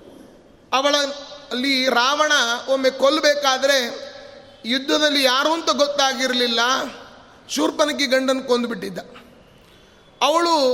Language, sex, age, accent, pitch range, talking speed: Kannada, male, 30-49, native, 255-295 Hz, 65 wpm